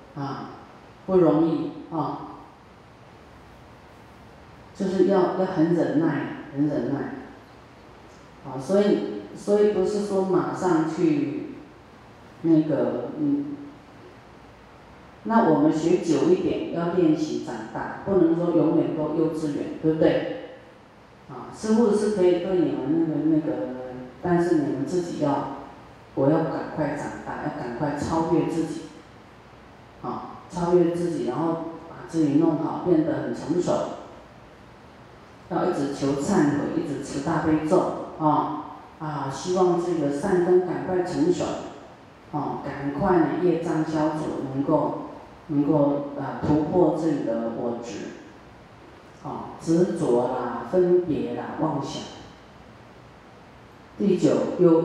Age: 40-59